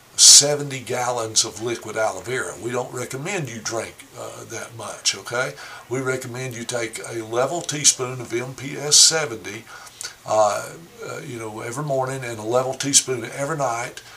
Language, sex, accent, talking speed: English, male, American, 155 wpm